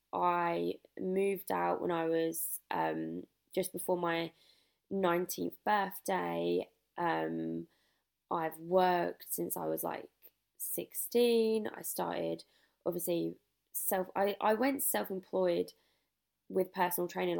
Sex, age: female, 20-39